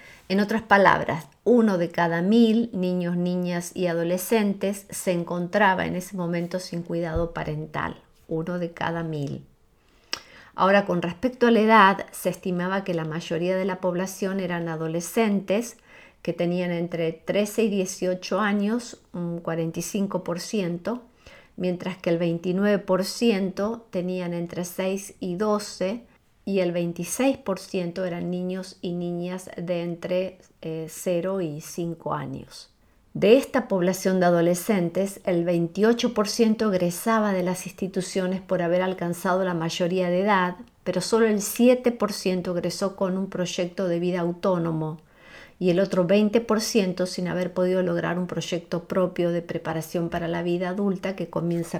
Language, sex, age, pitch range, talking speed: Spanish, female, 40-59, 175-195 Hz, 140 wpm